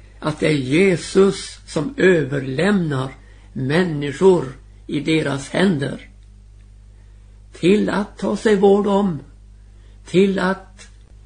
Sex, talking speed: male, 95 wpm